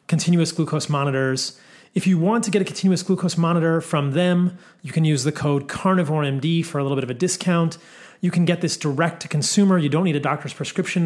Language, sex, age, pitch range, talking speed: English, male, 30-49, 140-165 Hz, 215 wpm